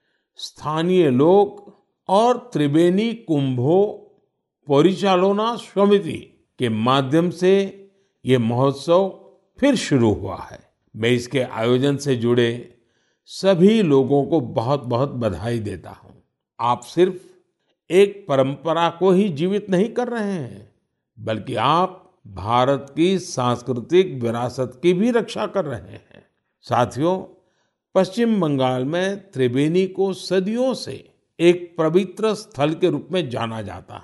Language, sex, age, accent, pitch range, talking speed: Hindi, male, 50-69, native, 130-190 Hz, 120 wpm